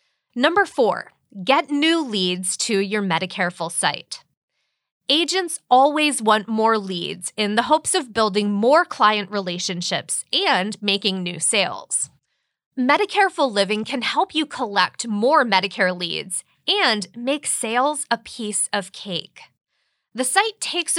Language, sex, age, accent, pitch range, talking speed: English, female, 20-39, American, 195-280 Hz, 130 wpm